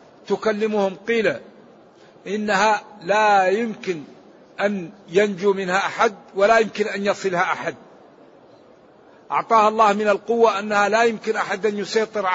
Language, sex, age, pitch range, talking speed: Arabic, male, 60-79, 185-215 Hz, 110 wpm